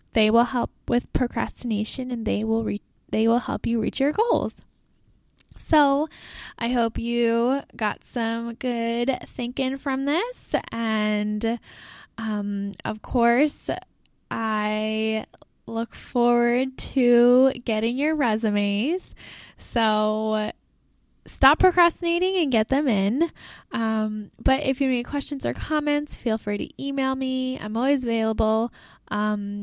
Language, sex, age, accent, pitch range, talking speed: English, female, 10-29, American, 215-280 Hz, 125 wpm